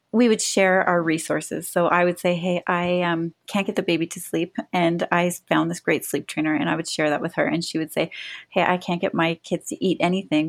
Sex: female